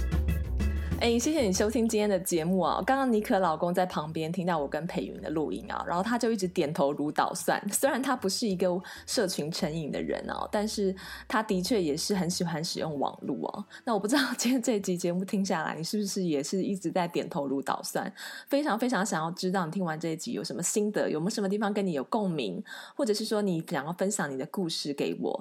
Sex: female